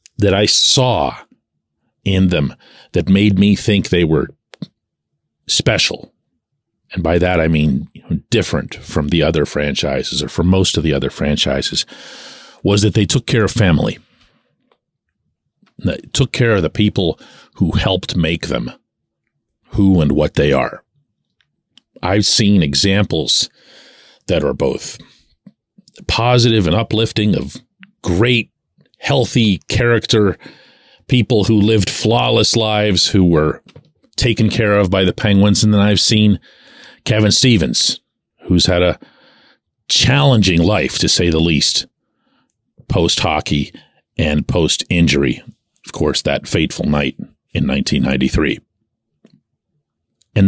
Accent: American